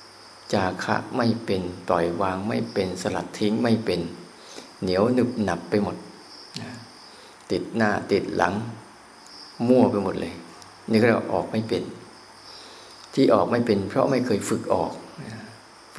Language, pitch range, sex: Thai, 90-115 Hz, male